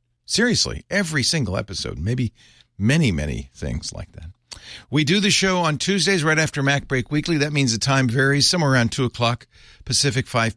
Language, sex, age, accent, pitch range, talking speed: English, male, 50-69, American, 100-130 Hz, 175 wpm